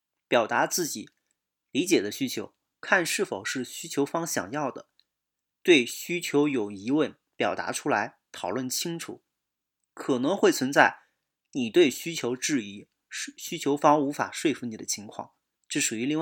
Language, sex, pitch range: Chinese, male, 125-205 Hz